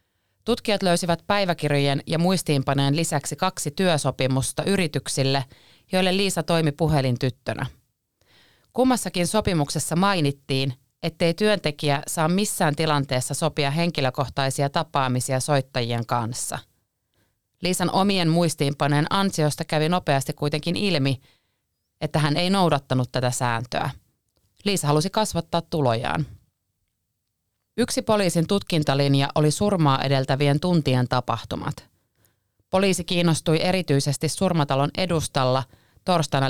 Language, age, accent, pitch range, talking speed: Finnish, 30-49, native, 130-170 Hz, 95 wpm